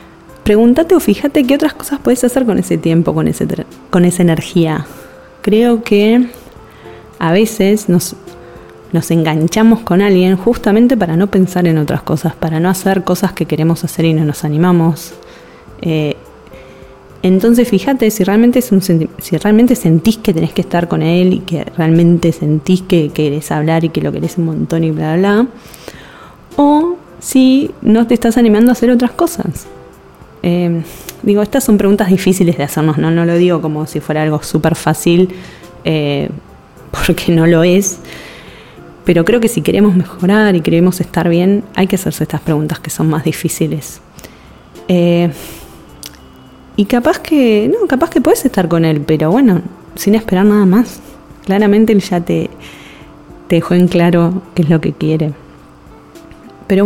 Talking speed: 170 wpm